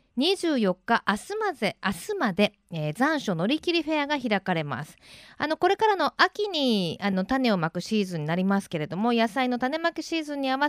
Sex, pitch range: female, 195-280 Hz